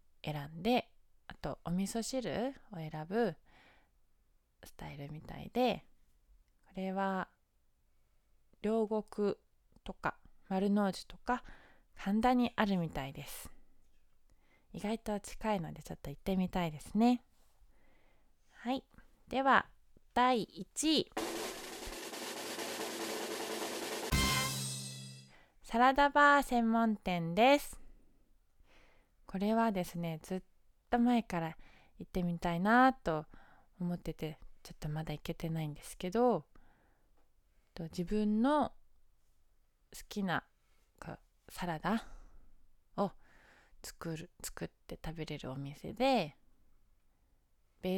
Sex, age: female, 20-39